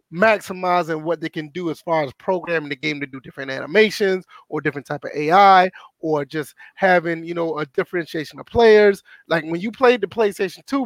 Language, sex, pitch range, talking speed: English, male, 160-215 Hz, 200 wpm